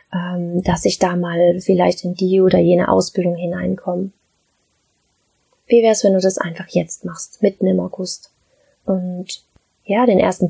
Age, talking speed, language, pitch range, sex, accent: 20-39, 150 wpm, German, 185-220 Hz, female, German